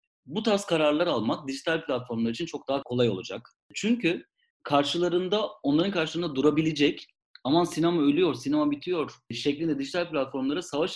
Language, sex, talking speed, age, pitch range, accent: Turkish, male, 135 wpm, 40-59, 125-170 Hz, native